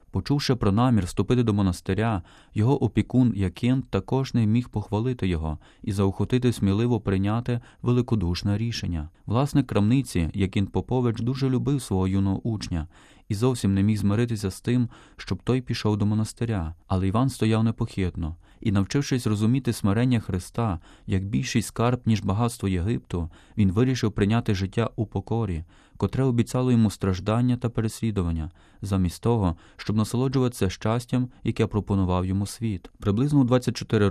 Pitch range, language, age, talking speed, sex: 95-120 Hz, Ukrainian, 30-49, 140 wpm, male